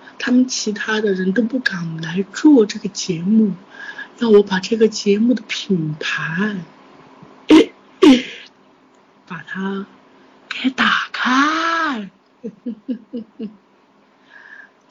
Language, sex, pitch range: Chinese, female, 210-315 Hz